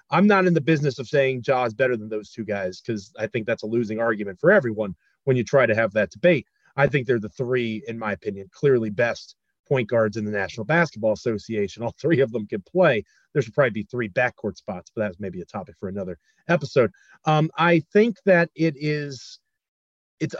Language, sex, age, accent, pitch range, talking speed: English, male, 30-49, American, 115-145 Hz, 220 wpm